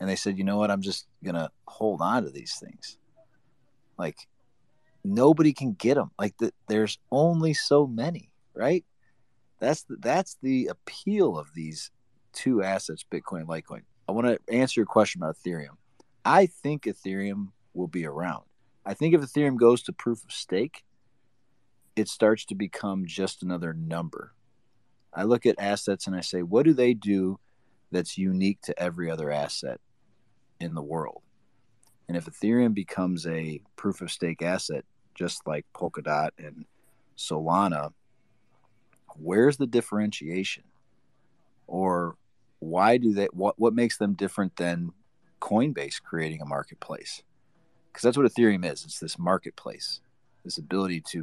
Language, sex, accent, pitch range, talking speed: English, male, American, 90-125 Hz, 155 wpm